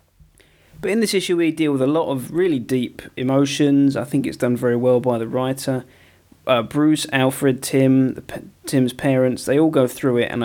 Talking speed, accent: 205 wpm, British